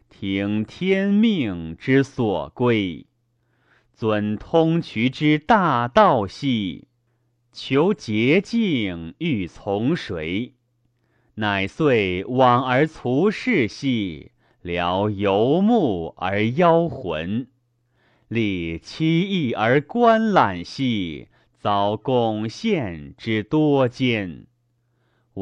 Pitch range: 105-155 Hz